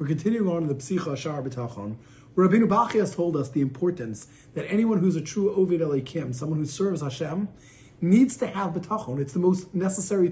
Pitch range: 150-210 Hz